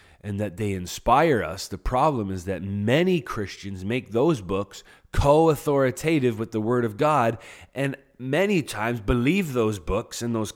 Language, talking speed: English, 160 wpm